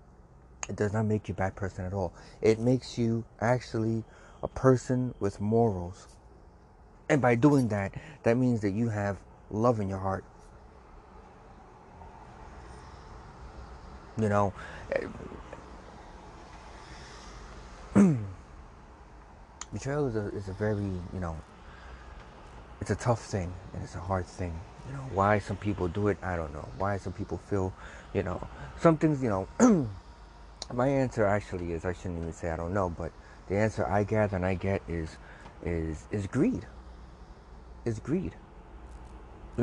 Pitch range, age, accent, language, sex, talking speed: 80-110 Hz, 30-49, American, English, male, 145 wpm